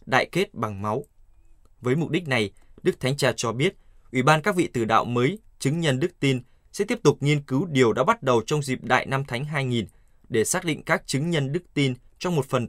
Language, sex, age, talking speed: Vietnamese, male, 20-39, 235 wpm